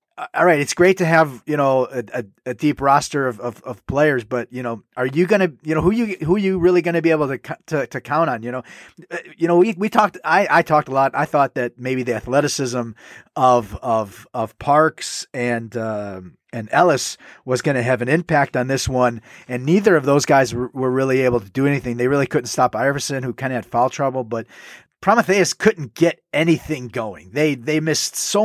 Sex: male